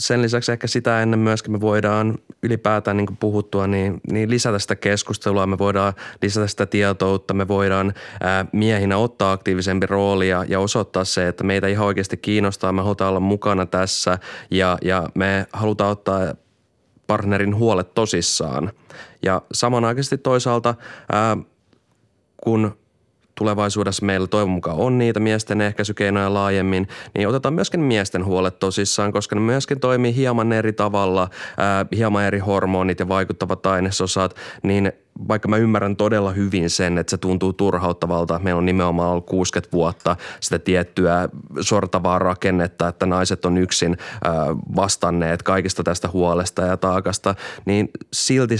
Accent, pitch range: native, 95-110 Hz